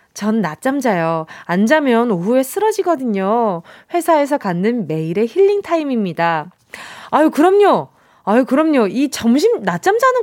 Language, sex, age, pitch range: Korean, female, 20-39, 205-310 Hz